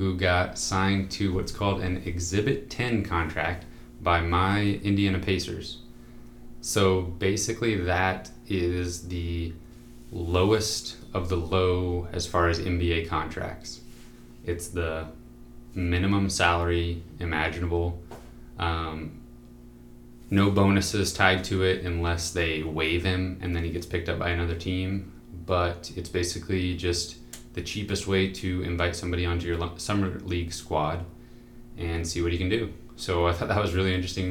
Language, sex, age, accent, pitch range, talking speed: English, male, 20-39, American, 85-95 Hz, 140 wpm